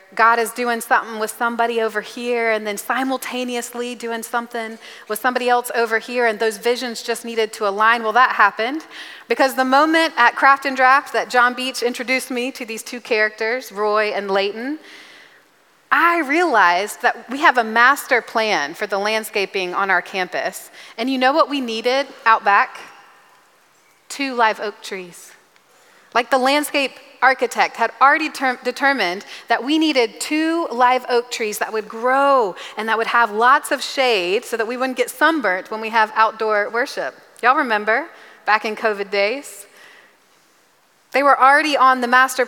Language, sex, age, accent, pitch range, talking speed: English, female, 30-49, American, 220-265 Hz, 170 wpm